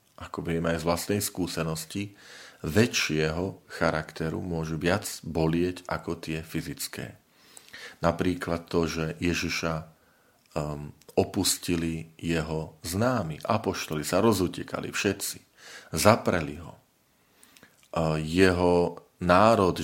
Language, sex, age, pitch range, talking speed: Slovak, male, 40-59, 85-100 Hz, 90 wpm